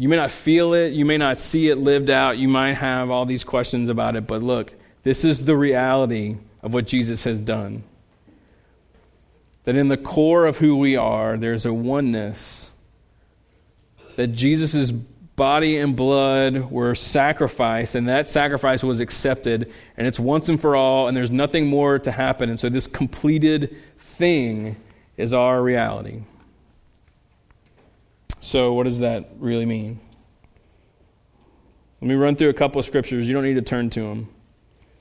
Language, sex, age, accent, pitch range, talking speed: English, male, 30-49, American, 120-150 Hz, 165 wpm